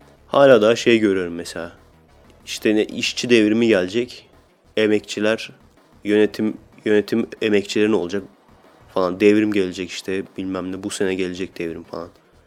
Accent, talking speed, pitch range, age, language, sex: native, 130 wpm, 90-105 Hz, 30-49, Turkish, male